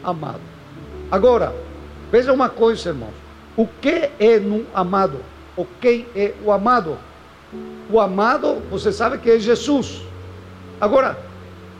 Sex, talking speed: male, 120 wpm